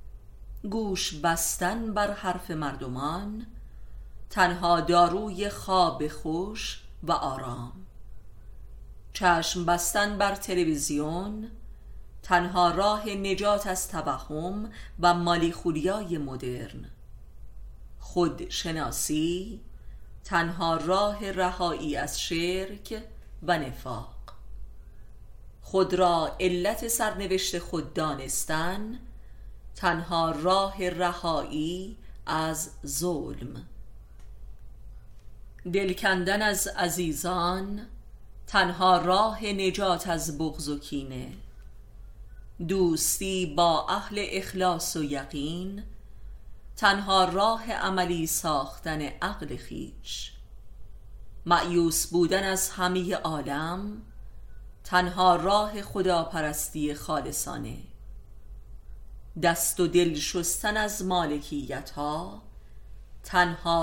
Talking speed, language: 75 wpm, Persian